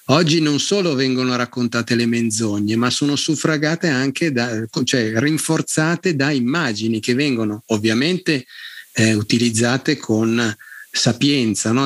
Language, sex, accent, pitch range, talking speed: Italian, male, native, 105-130 Hz, 120 wpm